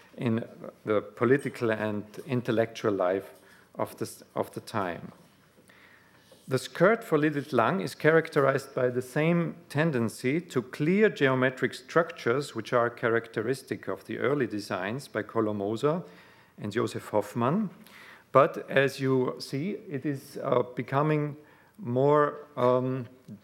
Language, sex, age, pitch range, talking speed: English, male, 40-59, 115-145 Hz, 120 wpm